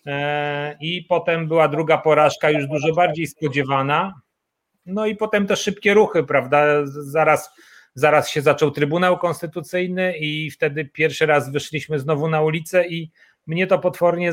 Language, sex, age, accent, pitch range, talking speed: Polish, male, 30-49, native, 150-180 Hz, 140 wpm